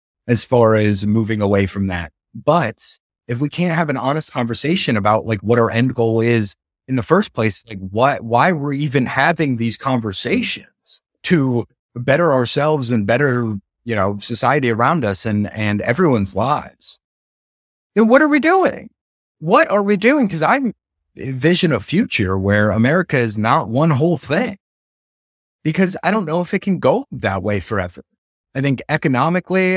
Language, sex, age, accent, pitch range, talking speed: English, male, 30-49, American, 110-155 Hz, 170 wpm